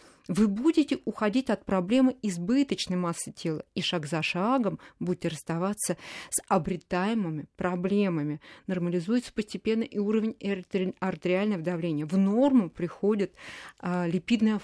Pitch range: 175-220 Hz